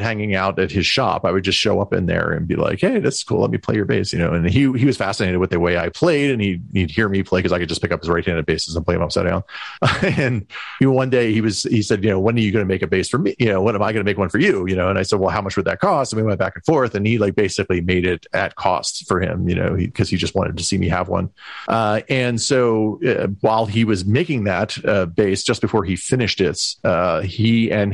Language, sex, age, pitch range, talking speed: English, male, 40-59, 90-110 Hz, 305 wpm